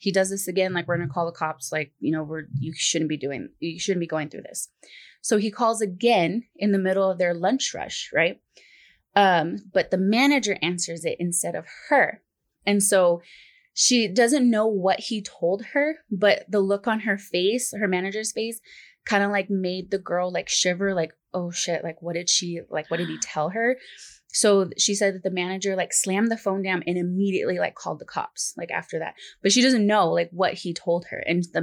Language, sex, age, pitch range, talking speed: English, female, 20-39, 175-205 Hz, 220 wpm